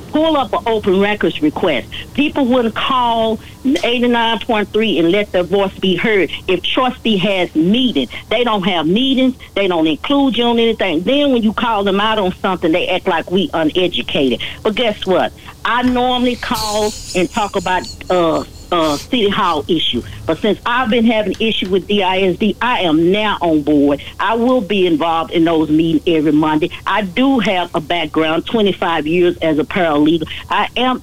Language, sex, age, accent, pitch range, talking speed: English, female, 60-79, American, 175-240 Hz, 175 wpm